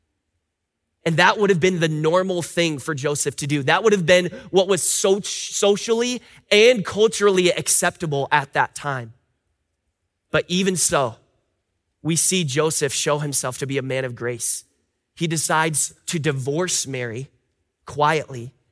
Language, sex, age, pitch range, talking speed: English, male, 20-39, 130-165 Hz, 145 wpm